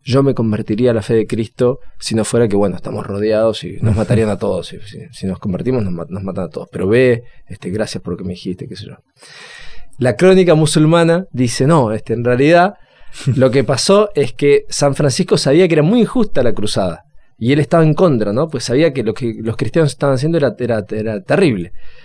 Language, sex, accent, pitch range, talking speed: Spanish, male, Argentinian, 110-150 Hz, 225 wpm